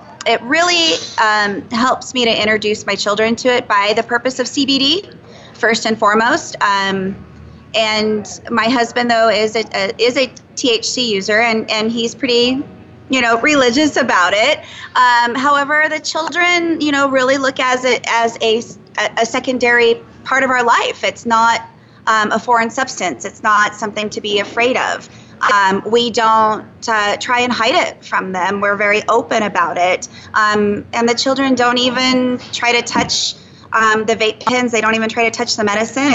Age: 30-49